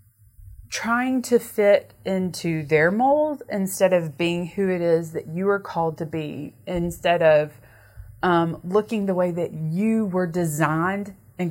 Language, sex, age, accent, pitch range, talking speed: English, female, 20-39, American, 160-215 Hz, 150 wpm